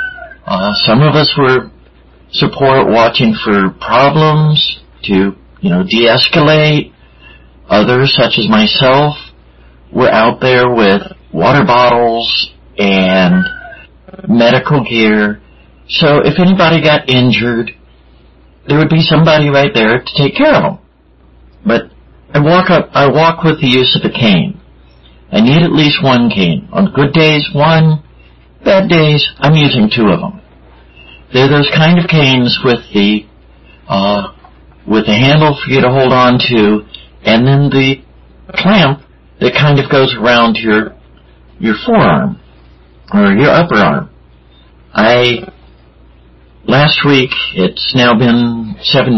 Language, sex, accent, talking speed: English, male, American, 135 wpm